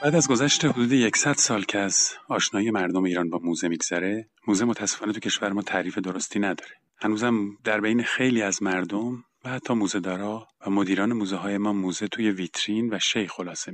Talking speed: 190 wpm